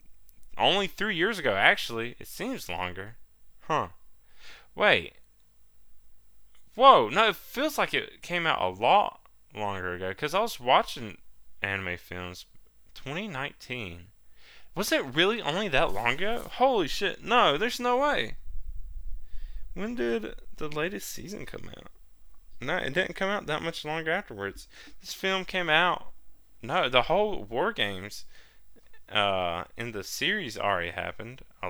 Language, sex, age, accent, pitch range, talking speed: English, male, 20-39, American, 75-130 Hz, 140 wpm